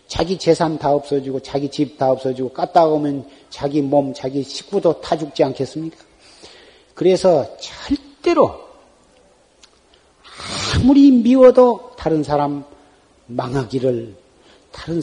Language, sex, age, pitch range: Korean, male, 40-59, 120-170 Hz